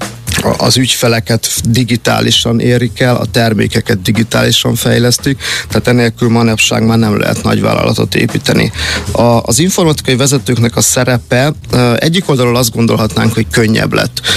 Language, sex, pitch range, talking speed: Hungarian, male, 110-125 Hz, 130 wpm